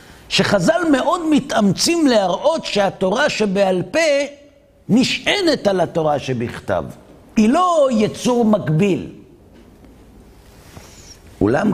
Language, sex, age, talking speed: Hebrew, male, 60-79, 80 wpm